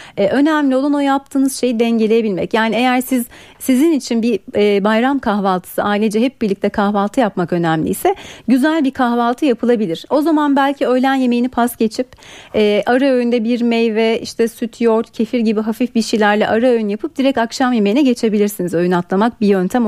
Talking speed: 170 wpm